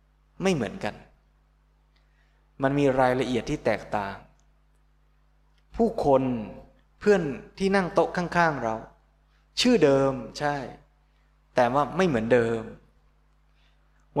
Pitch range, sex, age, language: 115-150 Hz, male, 20-39, Thai